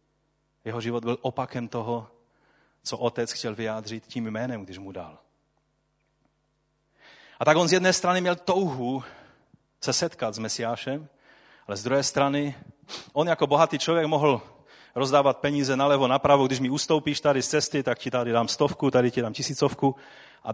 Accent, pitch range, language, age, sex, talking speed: native, 115-155 Hz, Czech, 30-49, male, 160 wpm